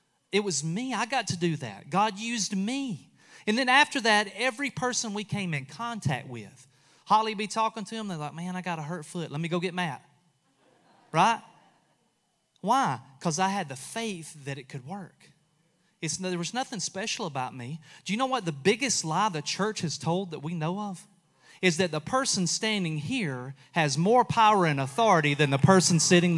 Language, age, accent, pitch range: English, 30-49, American, 145-200 Hz